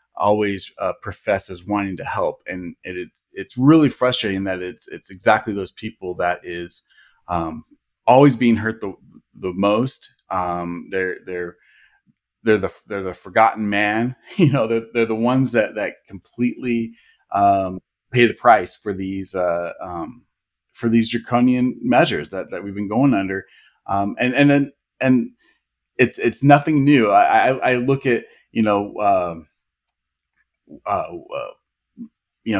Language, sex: English, male